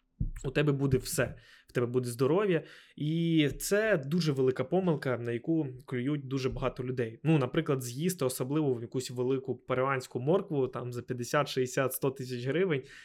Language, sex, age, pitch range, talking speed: Ukrainian, male, 20-39, 130-170 Hz, 160 wpm